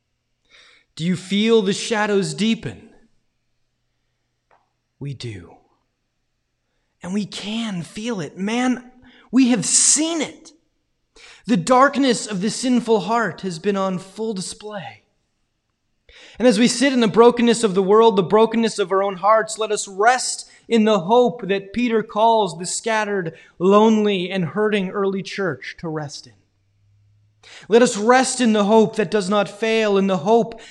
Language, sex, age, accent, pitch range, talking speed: English, male, 30-49, American, 190-235 Hz, 150 wpm